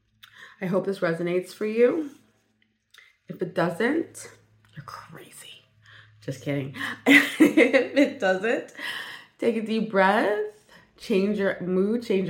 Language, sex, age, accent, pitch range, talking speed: English, female, 20-39, American, 150-200 Hz, 115 wpm